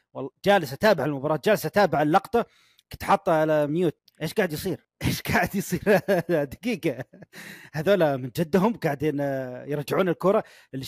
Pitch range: 150-220 Hz